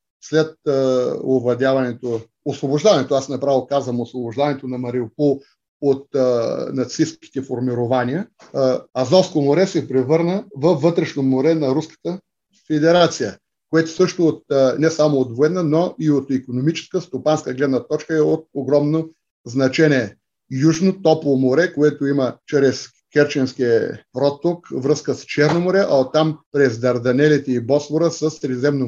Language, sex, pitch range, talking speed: Bulgarian, male, 135-165 Hz, 130 wpm